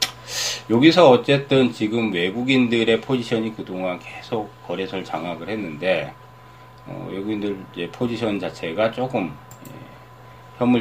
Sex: male